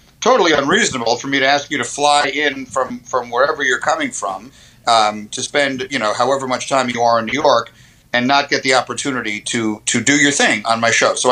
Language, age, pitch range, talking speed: English, 50-69, 125-150 Hz, 230 wpm